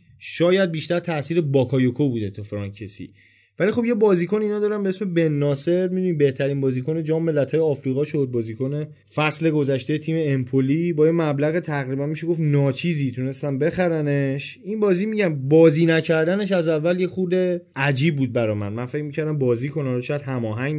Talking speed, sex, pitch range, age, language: 165 wpm, male, 130-170 Hz, 20-39, Persian